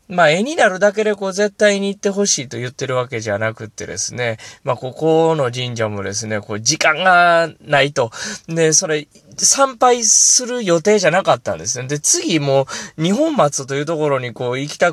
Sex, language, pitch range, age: male, Japanese, 120-180 Hz, 20-39